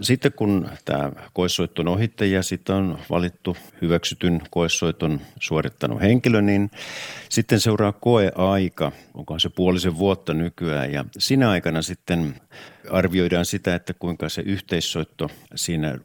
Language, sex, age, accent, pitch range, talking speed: Finnish, male, 50-69, native, 85-105 Hz, 120 wpm